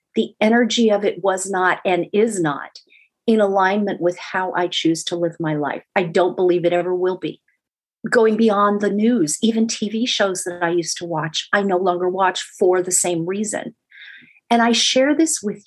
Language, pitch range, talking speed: English, 180-225 Hz, 195 wpm